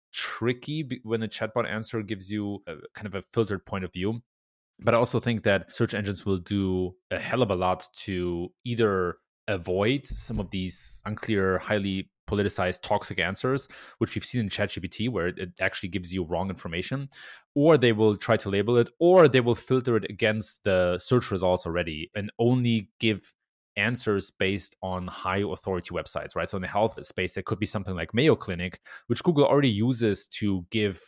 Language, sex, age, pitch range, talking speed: English, male, 30-49, 95-120 Hz, 185 wpm